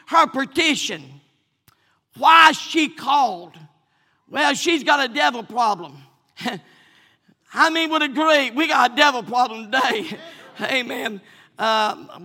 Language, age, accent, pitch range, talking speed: English, 50-69, American, 250-320 Hz, 120 wpm